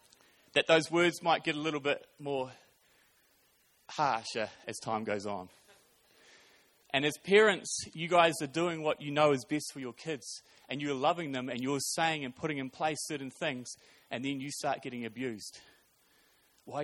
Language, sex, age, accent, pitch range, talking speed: English, male, 30-49, Australian, 130-160 Hz, 175 wpm